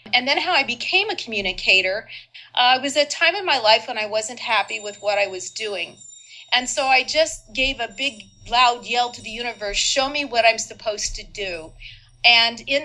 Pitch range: 210-255 Hz